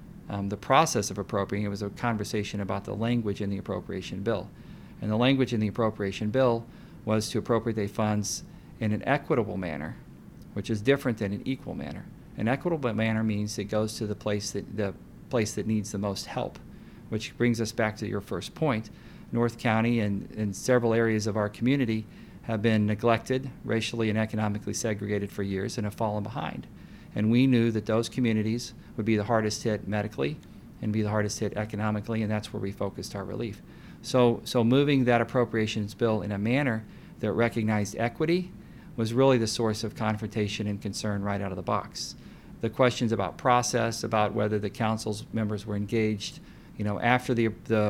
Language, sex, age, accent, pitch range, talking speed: English, male, 40-59, American, 105-115 Hz, 190 wpm